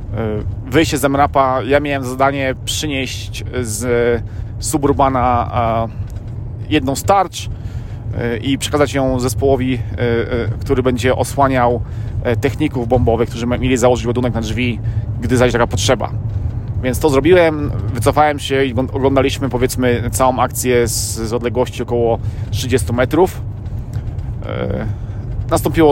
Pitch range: 110-140 Hz